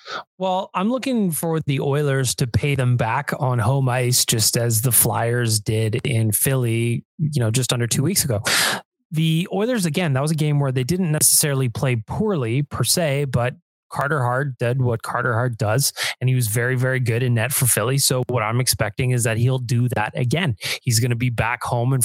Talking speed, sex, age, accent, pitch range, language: 210 wpm, male, 20-39, American, 120-150 Hz, English